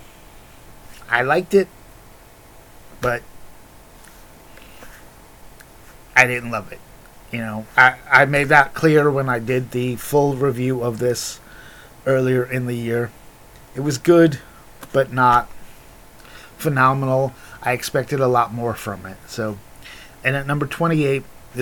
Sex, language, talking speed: male, English, 125 wpm